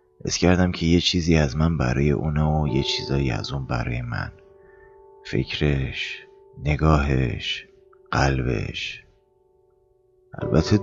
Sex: male